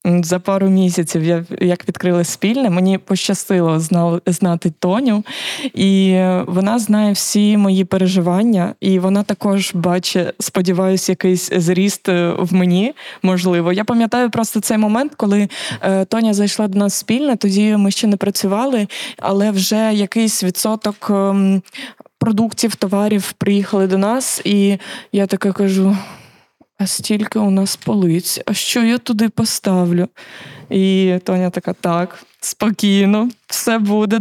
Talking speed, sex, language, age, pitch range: 125 wpm, female, Ukrainian, 20-39, 190-220 Hz